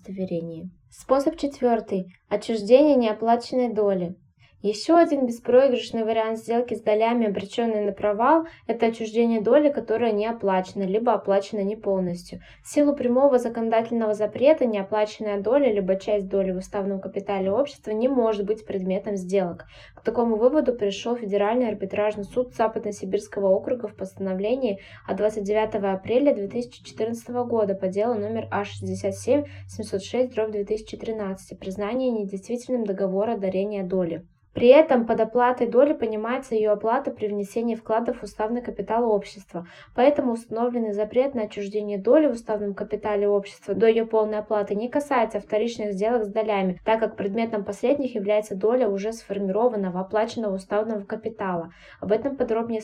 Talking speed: 135 wpm